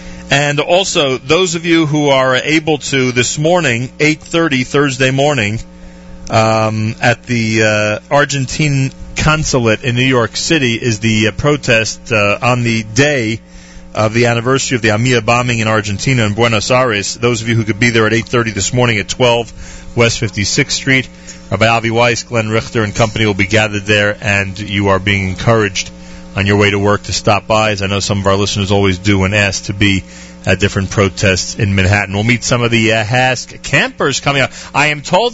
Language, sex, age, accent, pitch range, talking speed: English, male, 40-59, American, 100-135 Hz, 195 wpm